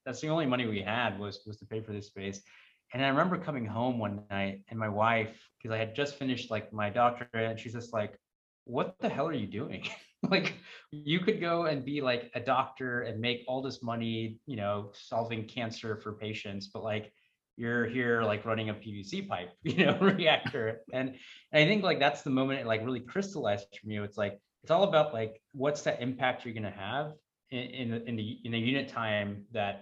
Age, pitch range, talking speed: 20-39, 110-135 Hz, 215 wpm